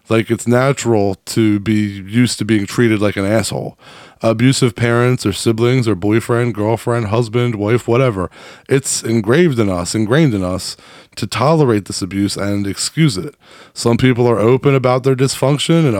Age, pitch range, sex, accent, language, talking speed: 20-39, 105-130 Hz, male, American, English, 165 wpm